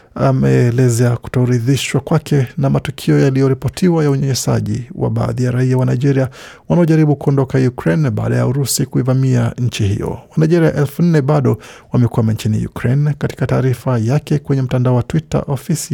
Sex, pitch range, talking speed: male, 120-145 Hz, 145 wpm